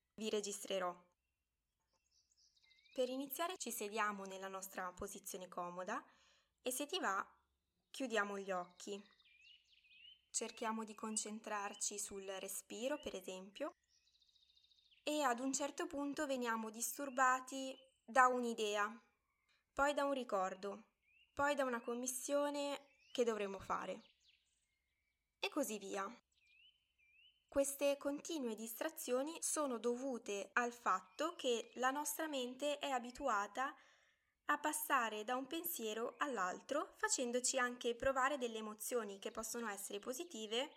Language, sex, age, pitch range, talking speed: Italian, female, 10-29, 215-285 Hz, 110 wpm